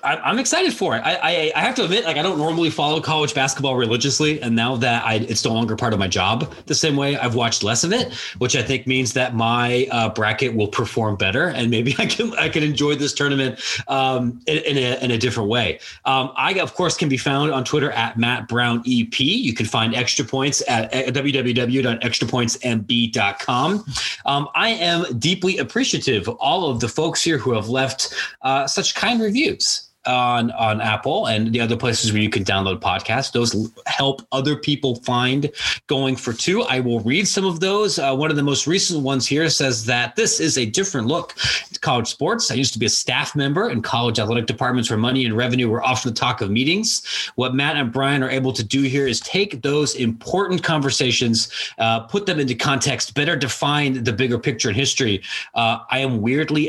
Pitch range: 120-145 Hz